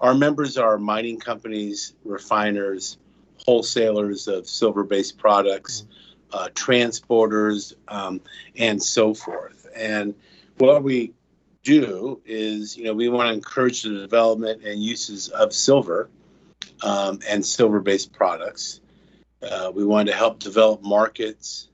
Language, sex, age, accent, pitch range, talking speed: English, male, 50-69, American, 105-120 Hz, 120 wpm